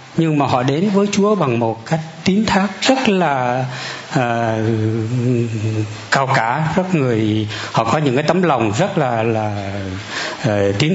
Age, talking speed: 60-79, 160 wpm